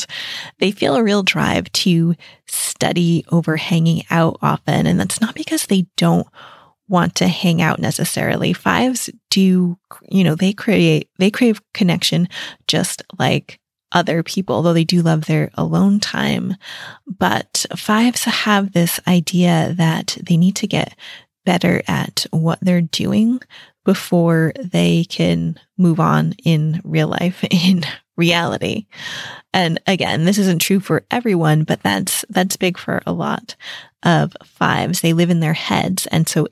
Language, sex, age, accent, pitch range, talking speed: English, female, 20-39, American, 160-190 Hz, 150 wpm